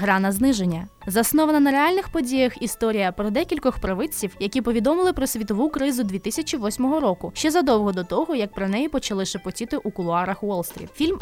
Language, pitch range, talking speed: Ukrainian, 195-280 Hz, 165 wpm